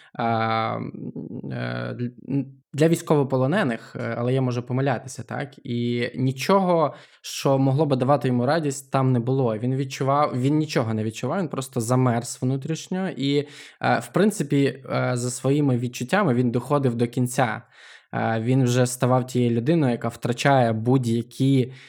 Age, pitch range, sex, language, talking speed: 20-39, 120-150 Hz, male, Ukrainian, 125 wpm